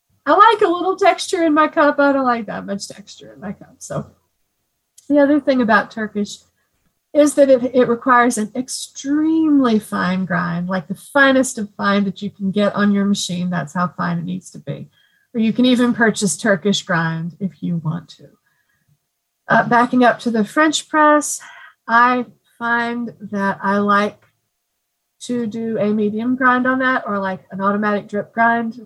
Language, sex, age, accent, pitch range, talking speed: English, female, 40-59, American, 195-255 Hz, 180 wpm